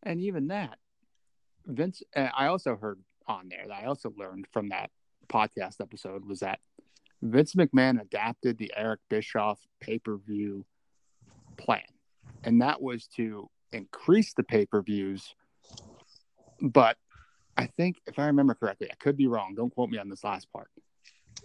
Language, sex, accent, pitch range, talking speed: English, male, American, 115-145 Hz, 150 wpm